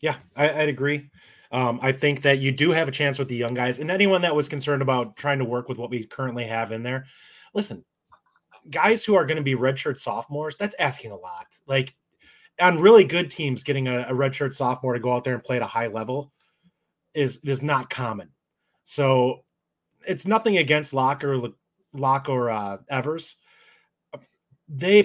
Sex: male